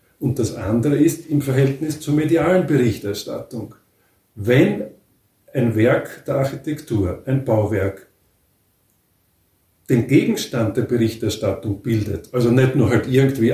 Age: 50-69